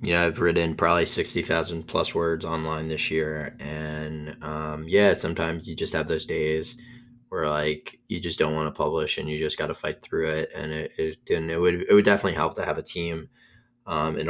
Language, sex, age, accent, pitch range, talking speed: English, male, 20-39, American, 80-85 Hz, 220 wpm